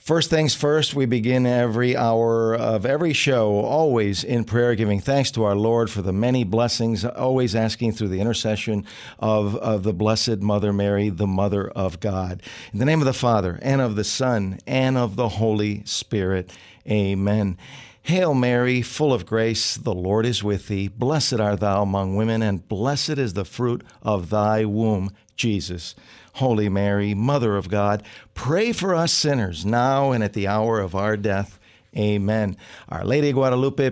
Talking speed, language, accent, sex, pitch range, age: 175 wpm, English, American, male, 100-125 Hz, 50-69